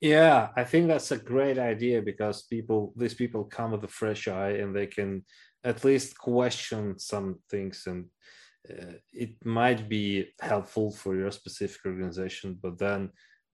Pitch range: 100-120 Hz